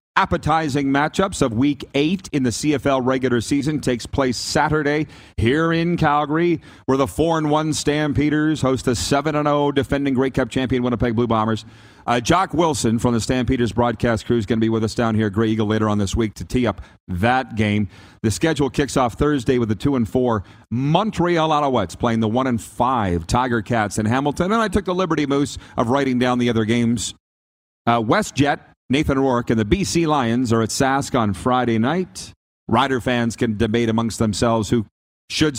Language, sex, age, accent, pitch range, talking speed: English, male, 40-59, American, 110-140 Hz, 195 wpm